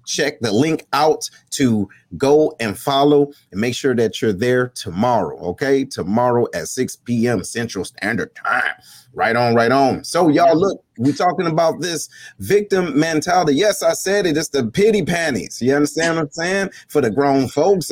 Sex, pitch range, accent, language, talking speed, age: male, 120-160 Hz, American, English, 180 wpm, 30-49